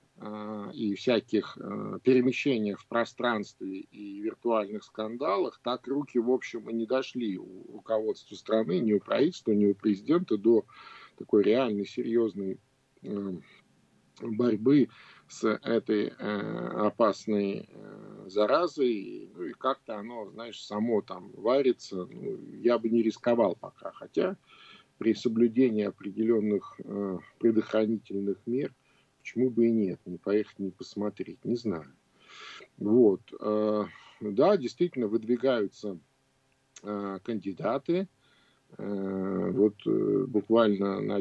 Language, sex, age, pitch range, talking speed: Russian, male, 50-69, 100-120 Hz, 105 wpm